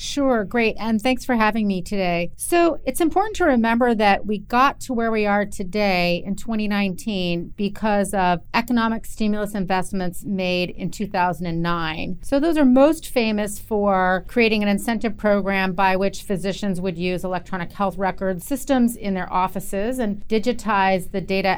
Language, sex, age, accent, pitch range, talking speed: English, female, 40-59, American, 190-230 Hz, 160 wpm